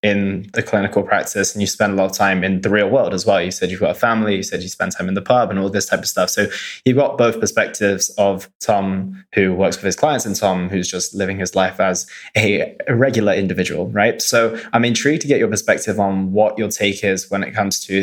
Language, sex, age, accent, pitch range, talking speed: English, male, 20-39, British, 95-110 Hz, 255 wpm